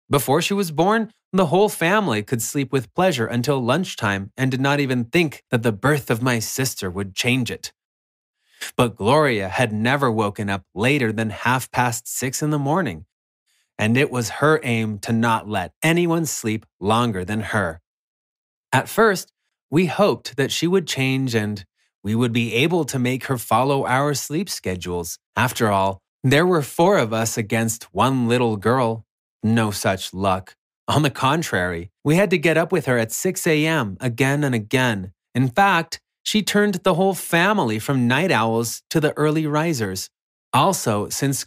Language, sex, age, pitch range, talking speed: English, male, 20-39, 115-165 Hz, 175 wpm